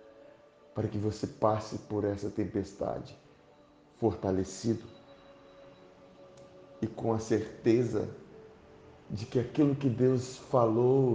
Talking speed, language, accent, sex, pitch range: 95 wpm, Portuguese, Brazilian, male, 105-135 Hz